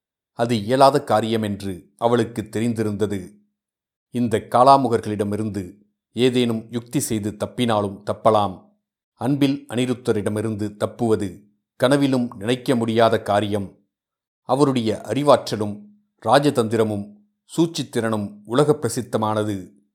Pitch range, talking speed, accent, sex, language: 105-125 Hz, 75 wpm, native, male, Tamil